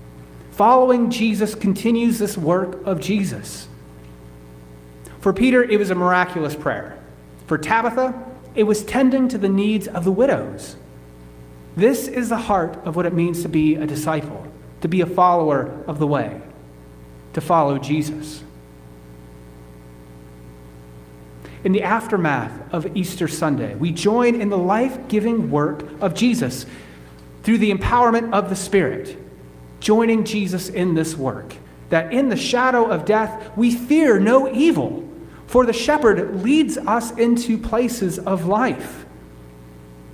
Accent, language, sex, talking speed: American, English, male, 135 wpm